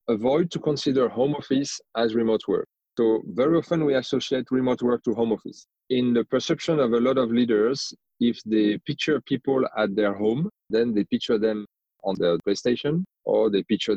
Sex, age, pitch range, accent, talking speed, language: male, 30-49, 115-135 Hz, French, 185 wpm, English